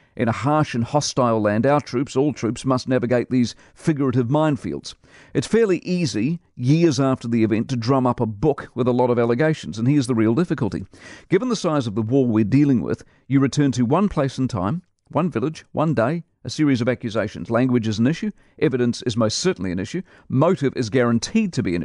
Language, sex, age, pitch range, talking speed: English, male, 50-69, 120-155 Hz, 210 wpm